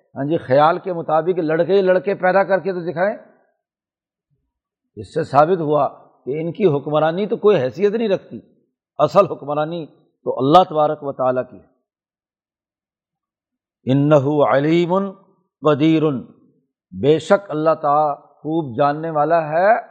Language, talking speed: Urdu, 135 wpm